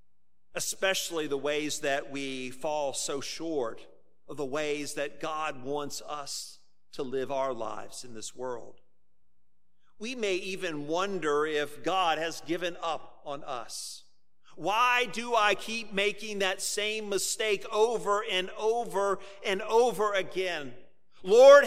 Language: English